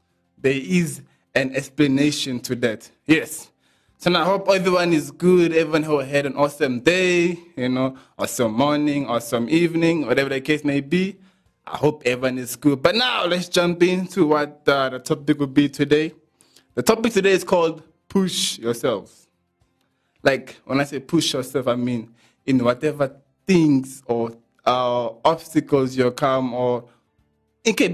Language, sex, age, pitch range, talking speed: English, male, 20-39, 130-170 Hz, 160 wpm